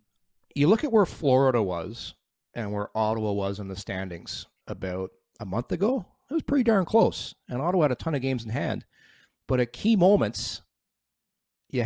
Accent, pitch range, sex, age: American, 110-150 Hz, male, 40-59